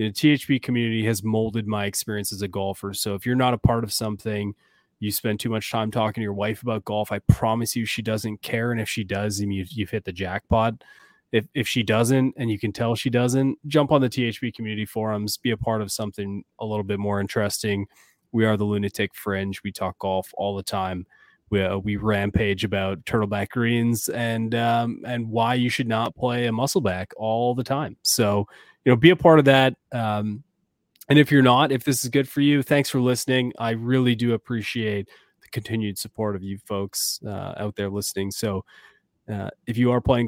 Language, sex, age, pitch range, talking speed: English, male, 20-39, 105-120 Hz, 210 wpm